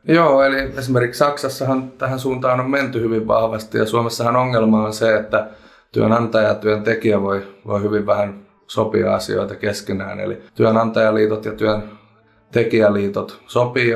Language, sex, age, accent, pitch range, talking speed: Finnish, male, 30-49, native, 105-115 Hz, 135 wpm